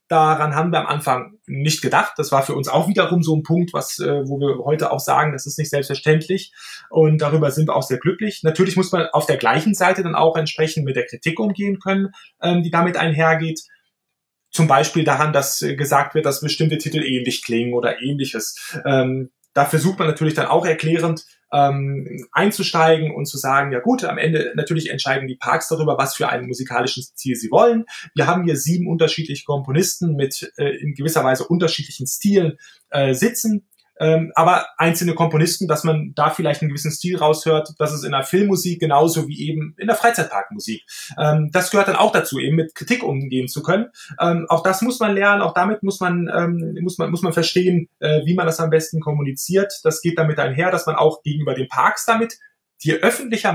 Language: German